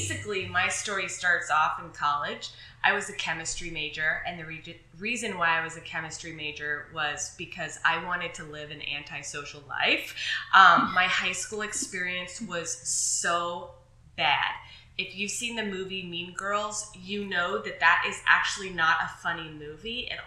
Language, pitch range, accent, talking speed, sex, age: English, 155-185 Hz, American, 170 wpm, female, 20-39